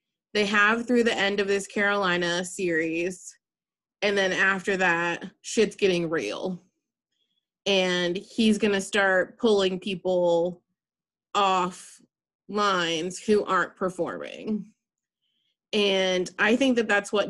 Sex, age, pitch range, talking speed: female, 20-39, 185-225 Hz, 120 wpm